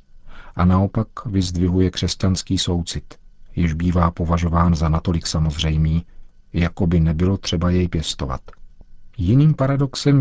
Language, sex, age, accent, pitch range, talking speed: Czech, male, 50-69, native, 85-100 Hz, 110 wpm